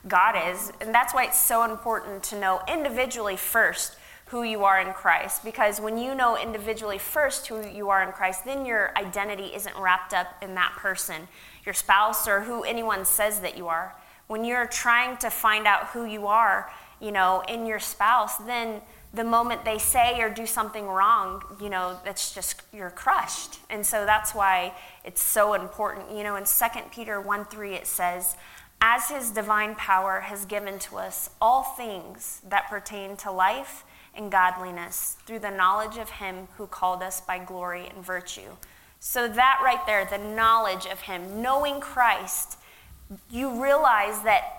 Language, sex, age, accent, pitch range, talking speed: English, female, 20-39, American, 195-230 Hz, 180 wpm